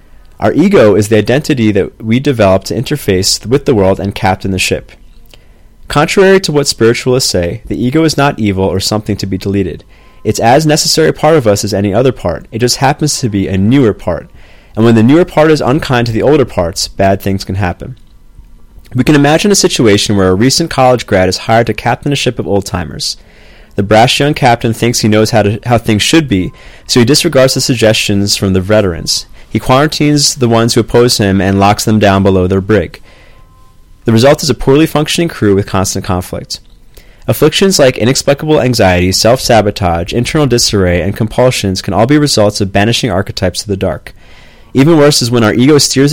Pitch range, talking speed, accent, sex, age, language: 95-130 Hz, 200 wpm, American, male, 30-49, English